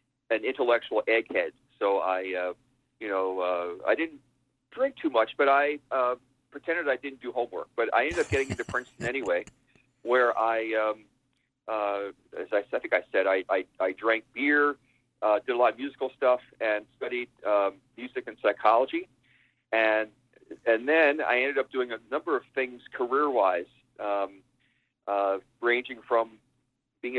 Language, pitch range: English, 110-135 Hz